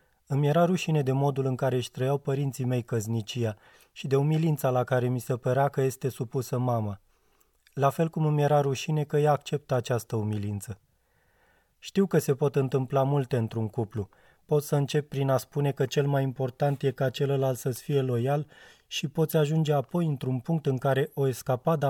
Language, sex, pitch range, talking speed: Romanian, male, 125-145 Hz, 190 wpm